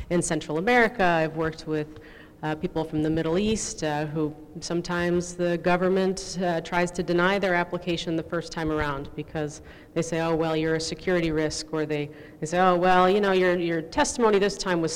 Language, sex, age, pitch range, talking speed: English, female, 40-59, 155-180 Hz, 200 wpm